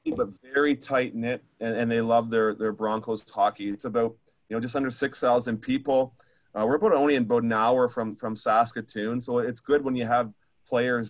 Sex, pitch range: male, 110-125 Hz